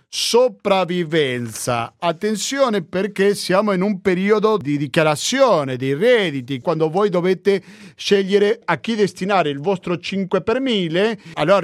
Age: 50-69